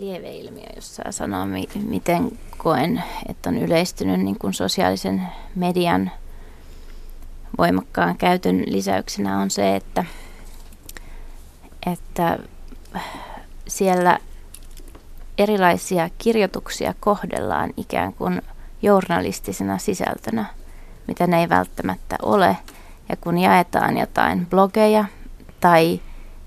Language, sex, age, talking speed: Finnish, female, 20-39, 90 wpm